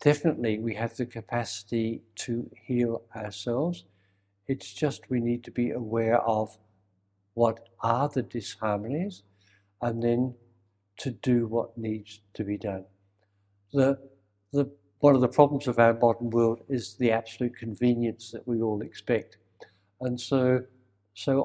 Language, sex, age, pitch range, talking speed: English, male, 60-79, 105-125 Hz, 135 wpm